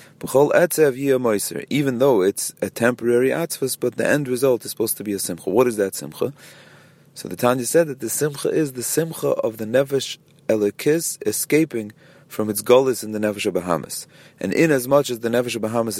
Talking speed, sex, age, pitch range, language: 190 wpm, male, 30-49, 110-135 Hz, English